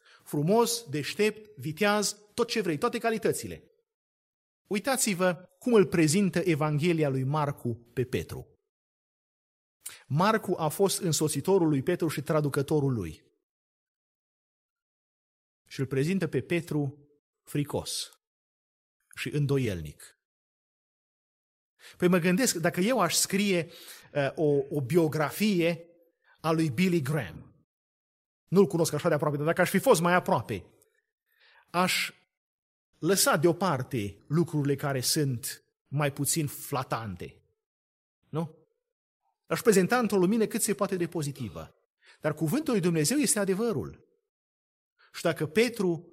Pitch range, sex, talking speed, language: 150-210 Hz, male, 115 wpm, Romanian